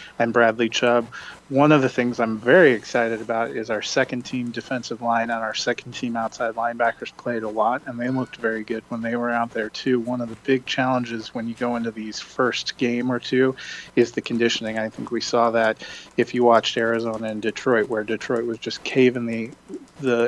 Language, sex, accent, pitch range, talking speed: English, male, American, 115-125 Hz, 215 wpm